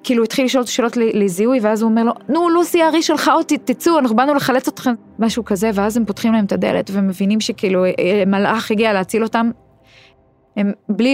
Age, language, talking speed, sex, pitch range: 20-39, Hebrew, 190 wpm, female, 180-215 Hz